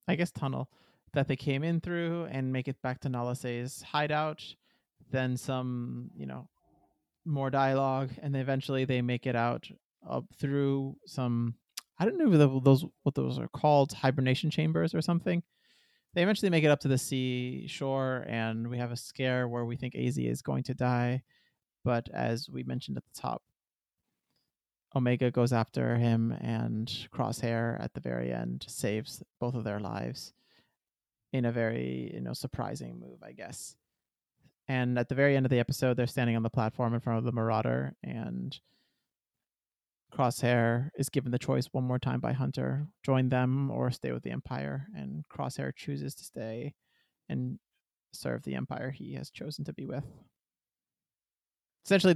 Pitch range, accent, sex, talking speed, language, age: 115-135 Hz, American, male, 170 wpm, English, 30-49